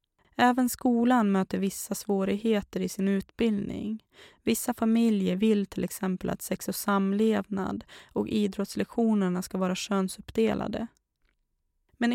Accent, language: native, Swedish